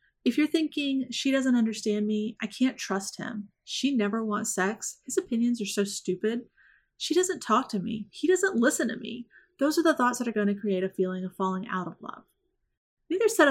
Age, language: 30-49, English